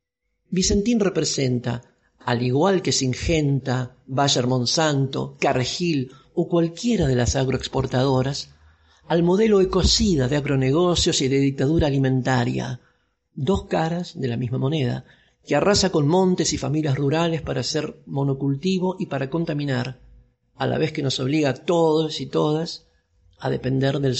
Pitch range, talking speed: 125-160 Hz, 135 wpm